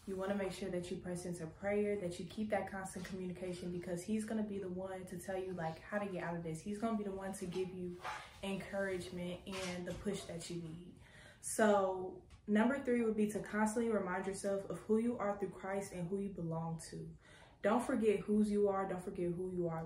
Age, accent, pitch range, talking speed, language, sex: 20-39, American, 175-200 Hz, 240 wpm, English, female